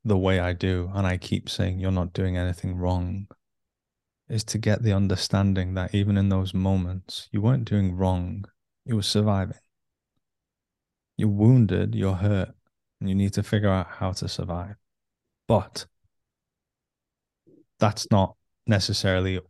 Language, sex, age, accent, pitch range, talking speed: English, male, 20-39, British, 95-105 Hz, 145 wpm